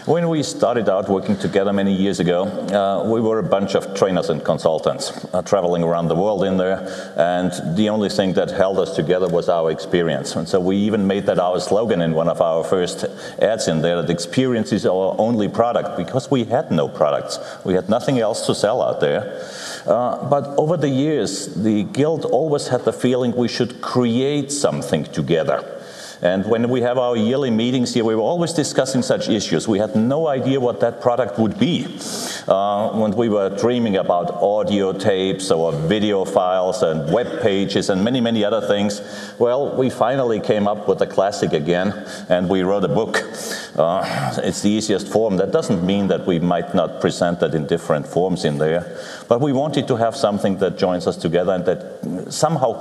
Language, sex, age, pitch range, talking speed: English, male, 40-59, 95-125 Hz, 200 wpm